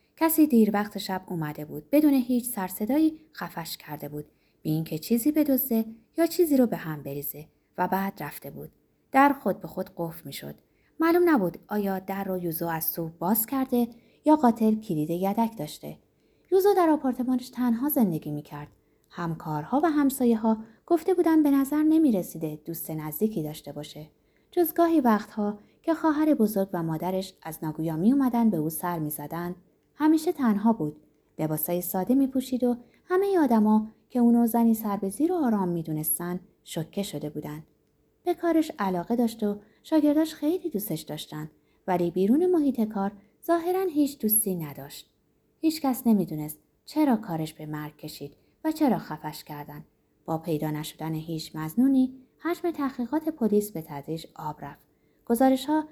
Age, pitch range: 20-39, 160-270 Hz